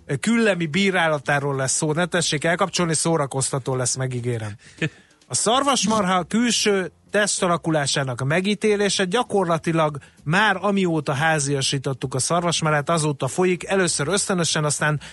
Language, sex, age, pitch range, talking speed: Hungarian, male, 30-49, 145-185 Hz, 105 wpm